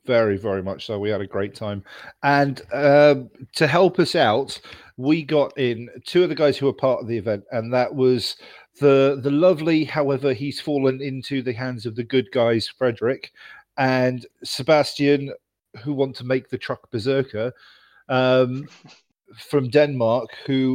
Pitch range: 120-145 Hz